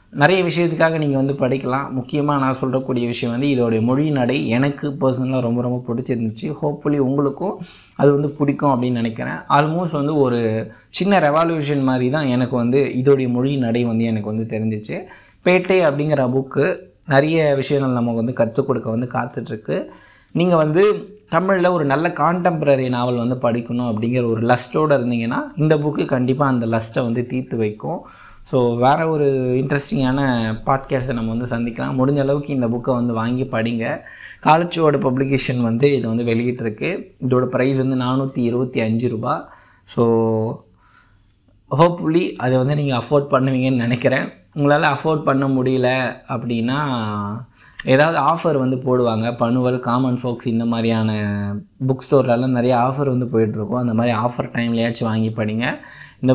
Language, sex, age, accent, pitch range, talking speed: Tamil, male, 20-39, native, 120-140 Hz, 140 wpm